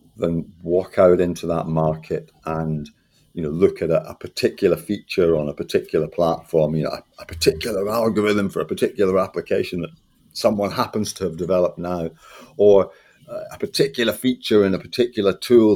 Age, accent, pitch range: 50-69, British, 80-105 Hz